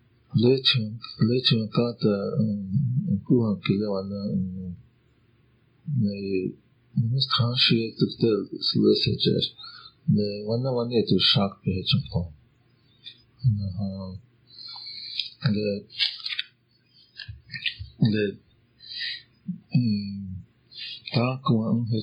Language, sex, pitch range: English, male, 100-125 Hz